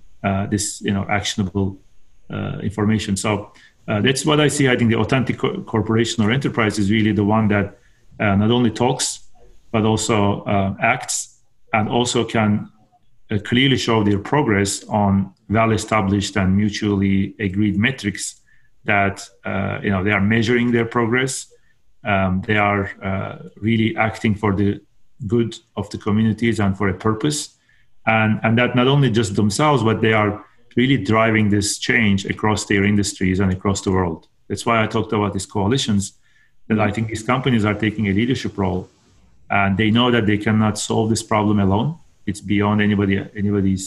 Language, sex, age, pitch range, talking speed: English, male, 40-59, 100-115 Hz, 170 wpm